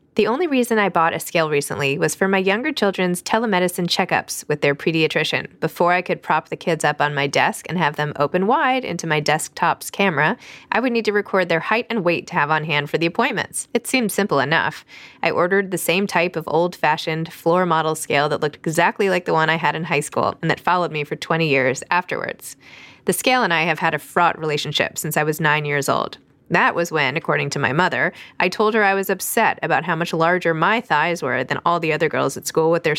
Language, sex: English, female